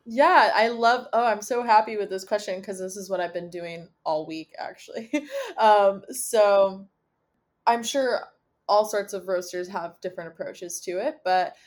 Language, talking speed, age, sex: English, 175 wpm, 20-39, female